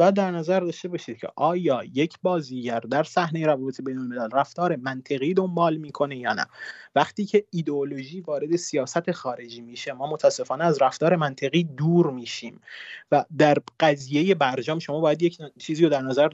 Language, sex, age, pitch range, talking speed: Persian, male, 30-49, 130-170 Hz, 160 wpm